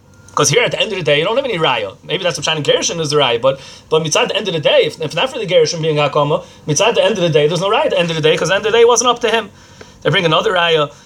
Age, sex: 30-49, male